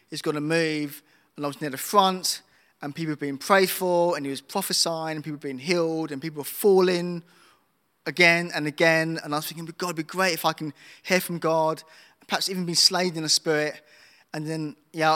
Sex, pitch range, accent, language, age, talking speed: male, 155-195 Hz, British, English, 20-39, 225 wpm